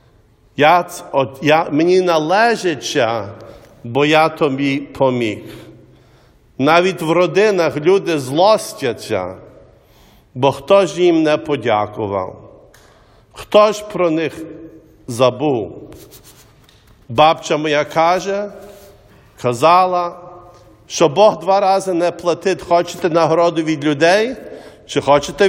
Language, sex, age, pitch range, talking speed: English, male, 50-69, 145-195 Hz, 95 wpm